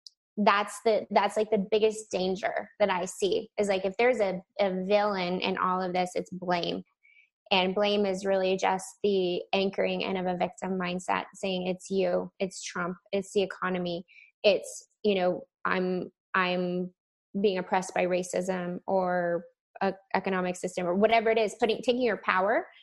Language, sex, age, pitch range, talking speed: English, female, 20-39, 190-220 Hz, 170 wpm